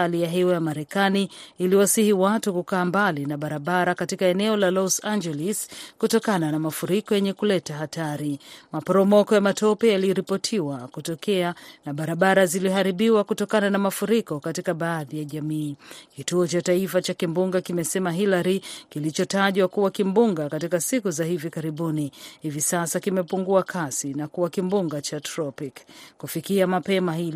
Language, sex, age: Swahili, female, 40-59